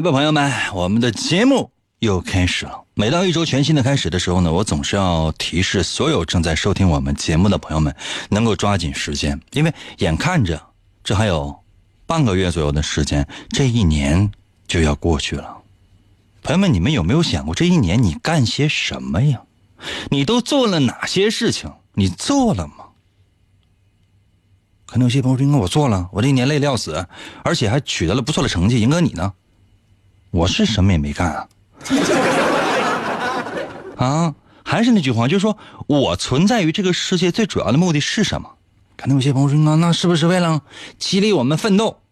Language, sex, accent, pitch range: Chinese, male, native, 95-160 Hz